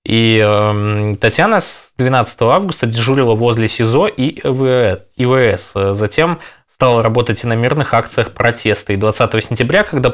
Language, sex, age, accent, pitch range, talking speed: Russian, male, 20-39, native, 110-140 Hz, 135 wpm